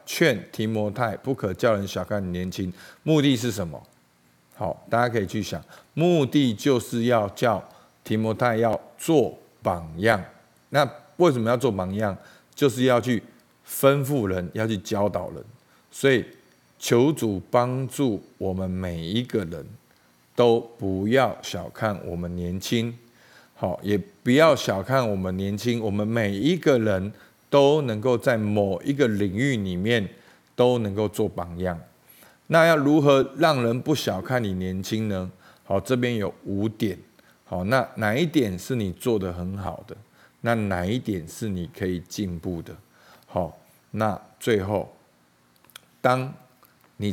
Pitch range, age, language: 95-120 Hz, 50-69, Chinese